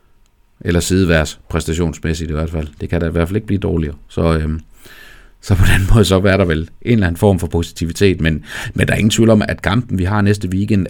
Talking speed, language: 240 wpm, Danish